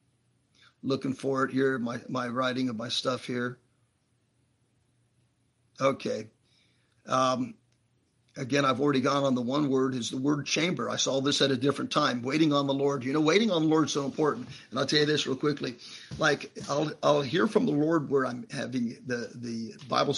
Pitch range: 125-140 Hz